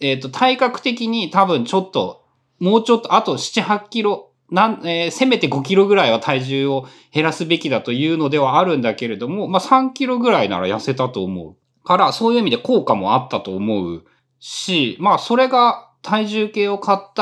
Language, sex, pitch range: Japanese, male, 130-200 Hz